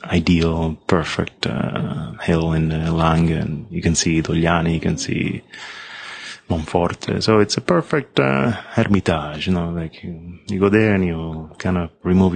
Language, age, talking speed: English, 30-49, 160 wpm